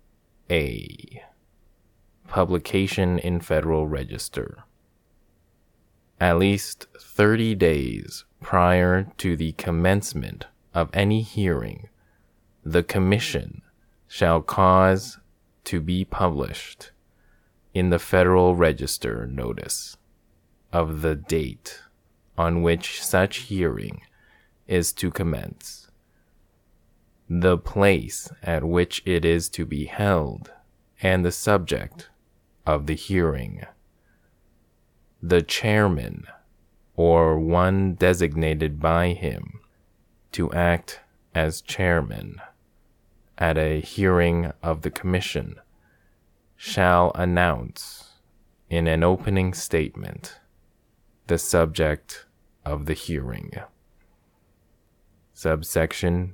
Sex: male